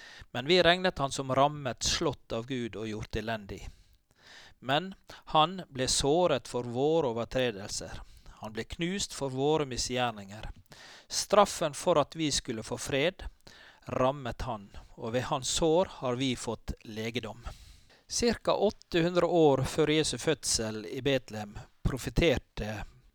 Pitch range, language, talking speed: 110-155 Hz, English, 135 wpm